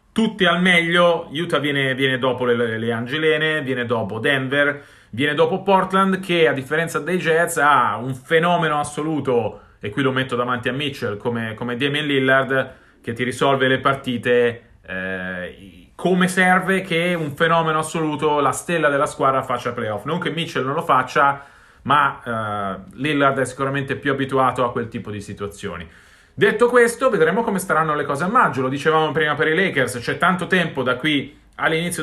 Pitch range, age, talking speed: 130-170 Hz, 30-49, 175 wpm